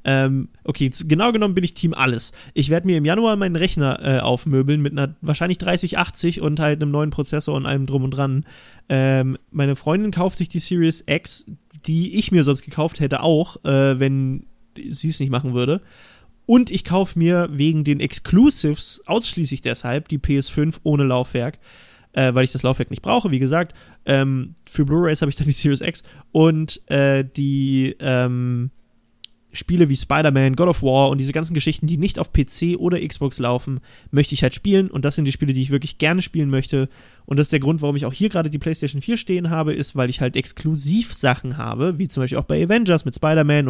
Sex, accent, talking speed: male, German, 205 wpm